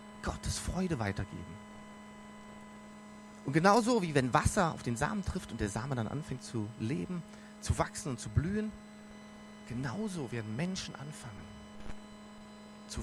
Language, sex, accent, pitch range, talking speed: German, male, German, 130-210 Hz, 135 wpm